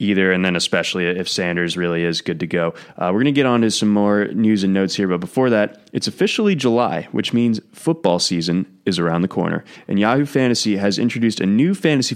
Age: 20-39